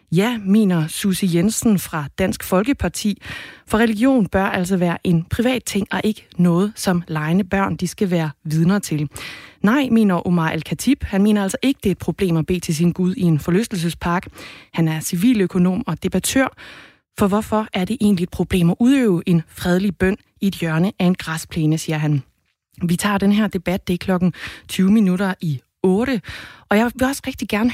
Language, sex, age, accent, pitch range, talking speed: Danish, female, 20-39, native, 175-210 Hz, 195 wpm